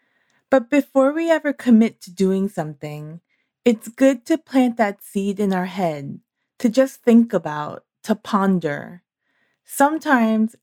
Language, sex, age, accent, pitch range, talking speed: English, female, 30-49, American, 175-235 Hz, 135 wpm